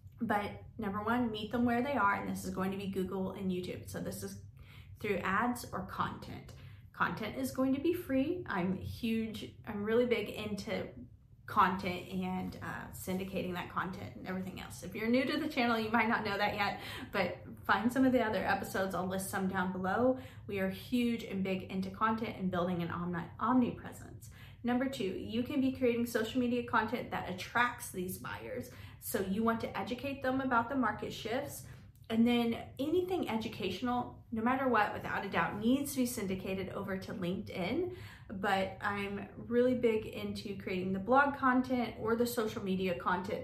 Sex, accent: female, American